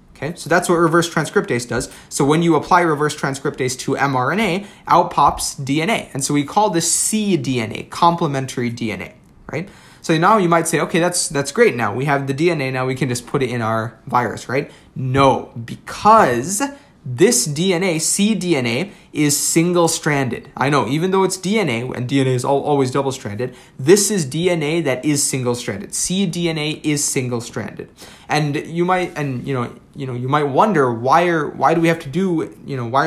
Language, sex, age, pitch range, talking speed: English, male, 20-39, 135-175 Hz, 190 wpm